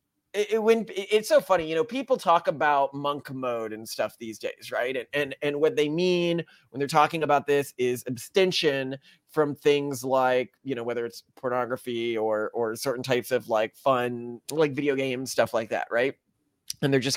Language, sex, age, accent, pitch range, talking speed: English, male, 30-49, American, 140-200 Hz, 195 wpm